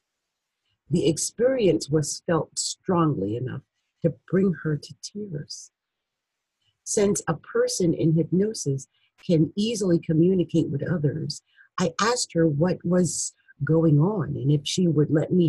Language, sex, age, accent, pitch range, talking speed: English, female, 50-69, American, 155-185 Hz, 130 wpm